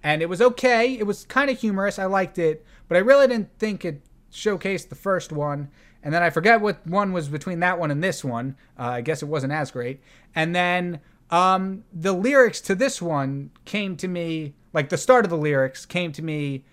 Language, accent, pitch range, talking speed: English, American, 140-200 Hz, 220 wpm